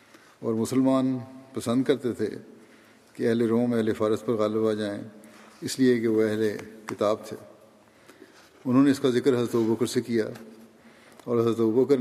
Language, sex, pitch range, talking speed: Urdu, male, 110-120 Hz, 165 wpm